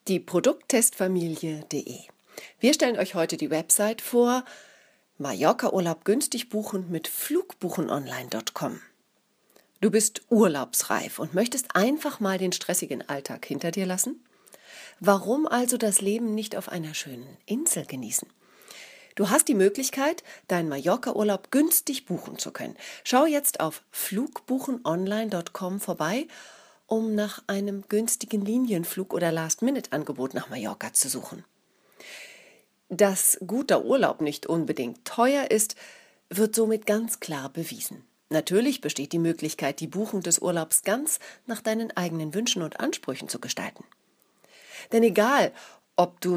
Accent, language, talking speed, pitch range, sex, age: German, German, 125 wpm, 175-255 Hz, female, 40-59